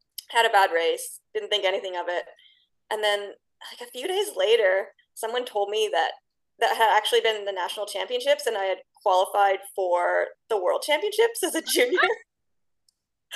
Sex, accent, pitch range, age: female, American, 190-320 Hz, 20-39